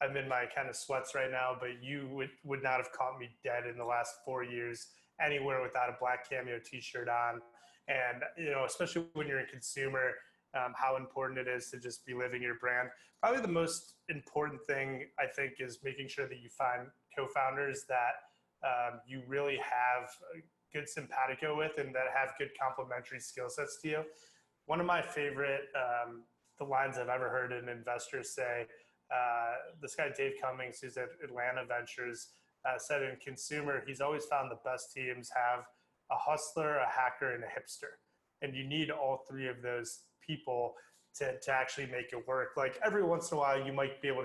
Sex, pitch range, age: male, 125-140 Hz, 20-39